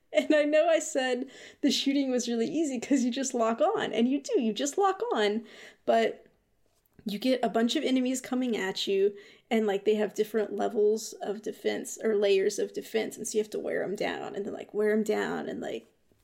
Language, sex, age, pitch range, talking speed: English, female, 20-39, 220-290 Hz, 220 wpm